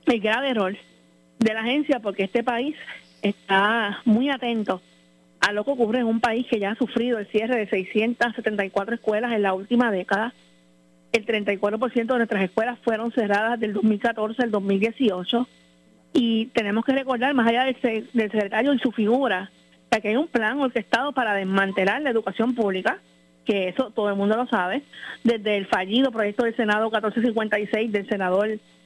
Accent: American